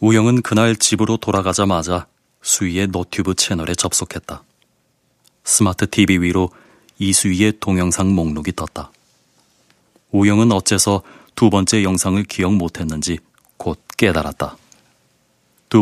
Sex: male